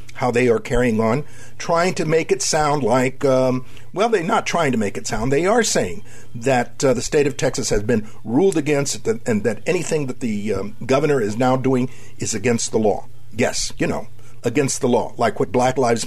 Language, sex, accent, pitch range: English, male, American, 120-145 Hz